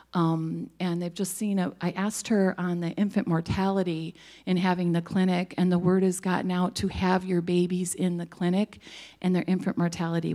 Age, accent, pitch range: 40-59, American, 165-185 Hz